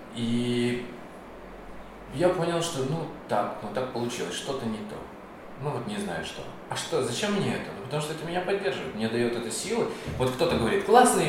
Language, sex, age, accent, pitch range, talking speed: Russian, male, 20-39, native, 155-200 Hz, 190 wpm